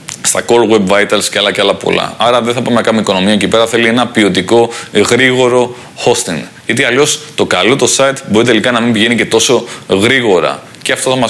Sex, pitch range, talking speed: male, 115-145 Hz, 220 wpm